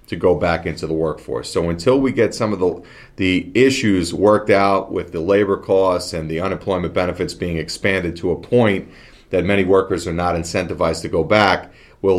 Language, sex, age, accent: English, male, 40-59, American